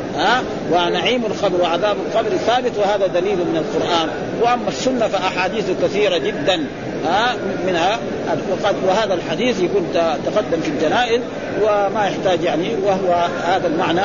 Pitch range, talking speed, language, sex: 190-240 Hz, 130 wpm, Arabic, male